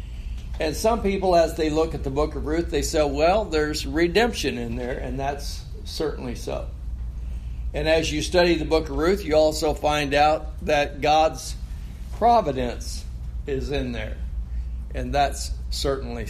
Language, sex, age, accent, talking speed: English, male, 60-79, American, 160 wpm